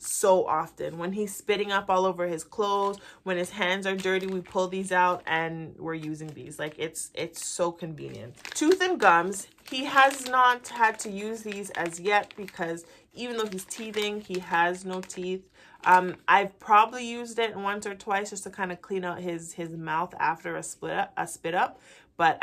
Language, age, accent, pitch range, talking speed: English, 30-49, American, 170-210 Hz, 200 wpm